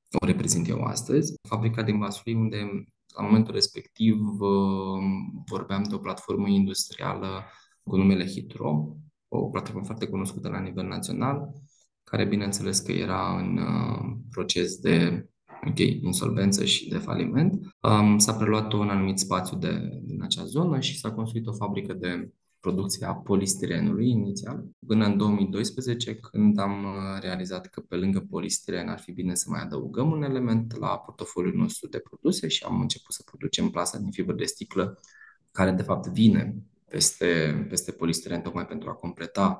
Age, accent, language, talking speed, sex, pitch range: 20-39, native, Romanian, 150 wpm, male, 95-115 Hz